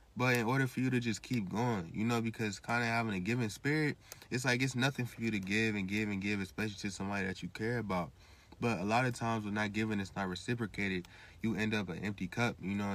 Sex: male